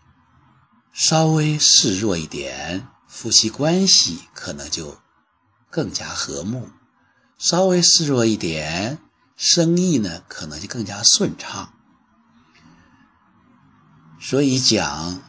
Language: Chinese